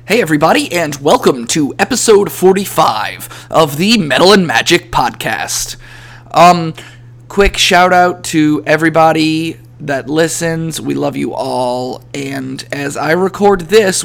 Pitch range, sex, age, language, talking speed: 125-160 Hz, male, 20-39, English, 130 wpm